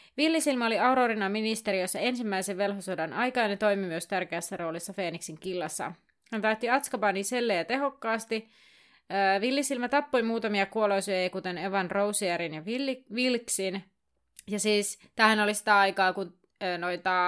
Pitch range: 180-225 Hz